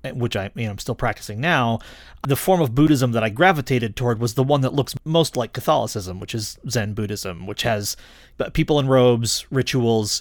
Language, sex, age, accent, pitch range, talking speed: English, male, 30-49, American, 110-140 Hz, 200 wpm